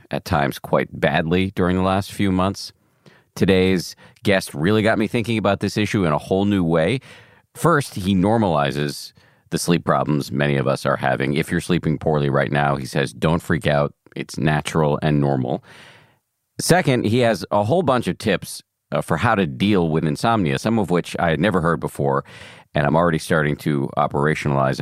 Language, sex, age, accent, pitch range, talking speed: English, male, 40-59, American, 75-110 Hz, 185 wpm